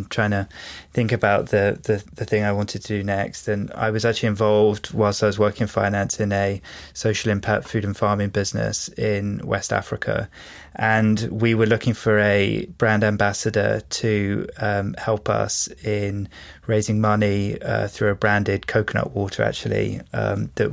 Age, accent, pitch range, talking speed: 20-39, British, 100-110 Hz, 170 wpm